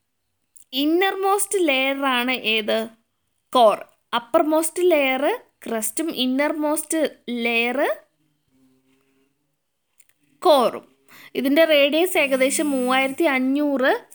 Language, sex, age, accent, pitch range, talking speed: Malayalam, female, 20-39, native, 245-315 Hz, 80 wpm